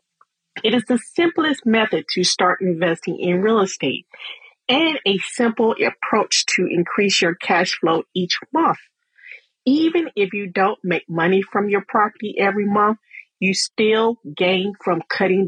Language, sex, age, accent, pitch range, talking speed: English, female, 40-59, American, 175-230 Hz, 145 wpm